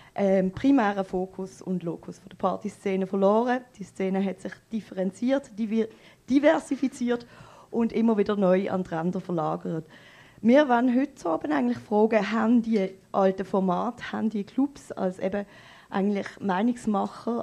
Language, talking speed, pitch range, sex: German, 130 wpm, 190-240 Hz, female